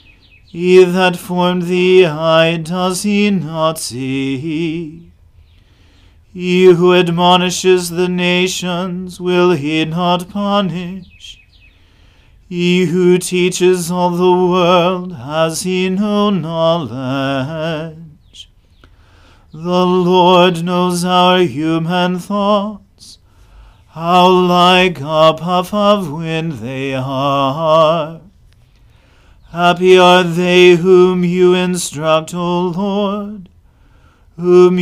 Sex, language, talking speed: male, English, 90 wpm